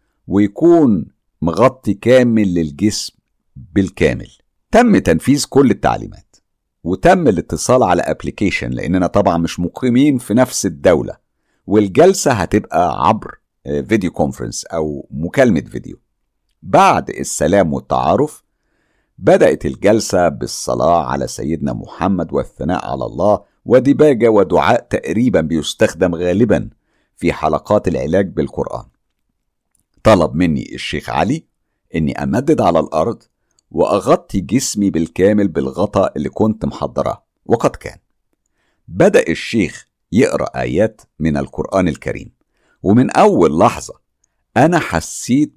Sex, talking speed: male, 105 wpm